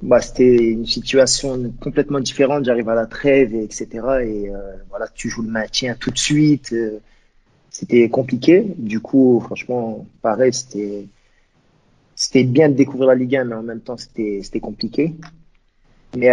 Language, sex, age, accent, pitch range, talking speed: French, male, 30-49, French, 115-135 Hz, 160 wpm